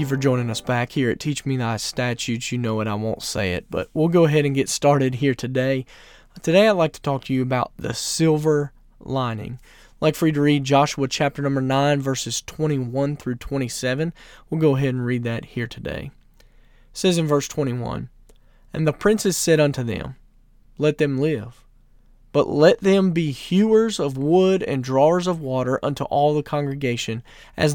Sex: male